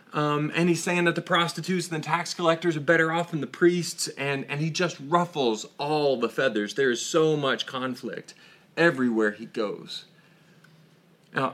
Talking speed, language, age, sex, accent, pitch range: 175 wpm, English, 30-49, male, American, 120-175 Hz